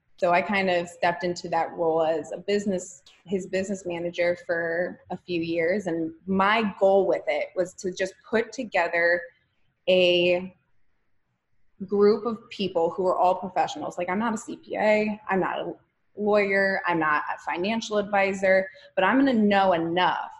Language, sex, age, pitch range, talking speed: English, female, 20-39, 165-200 Hz, 165 wpm